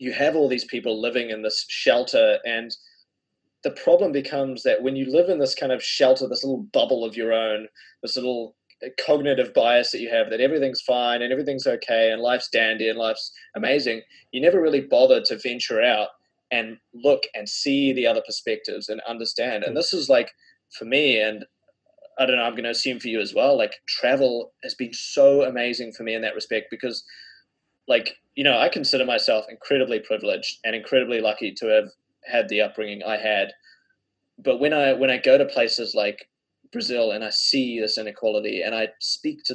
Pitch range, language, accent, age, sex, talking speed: 115-145 Hz, English, Australian, 20-39, male, 195 wpm